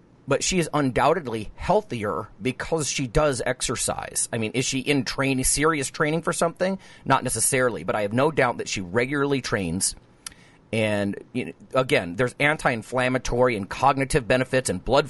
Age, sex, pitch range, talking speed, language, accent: 40-59, male, 105-140 Hz, 155 wpm, English, American